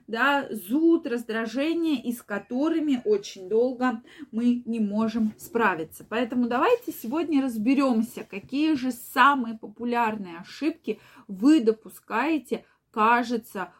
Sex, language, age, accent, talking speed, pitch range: female, Russian, 20-39, native, 105 wpm, 215-275 Hz